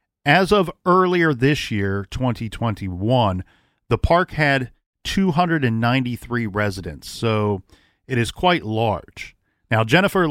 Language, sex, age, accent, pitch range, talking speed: English, male, 40-59, American, 105-140 Hz, 105 wpm